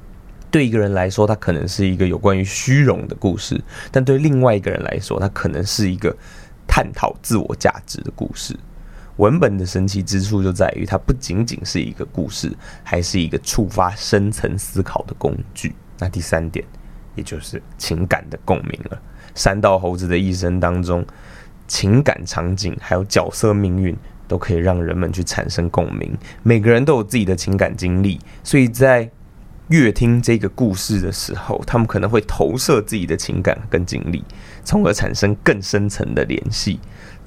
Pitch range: 90-110 Hz